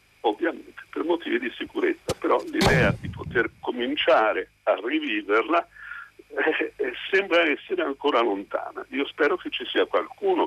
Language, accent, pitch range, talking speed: Italian, native, 320-405 Hz, 140 wpm